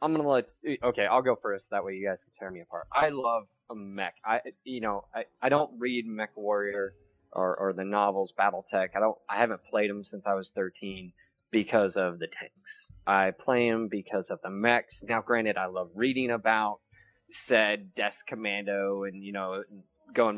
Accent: American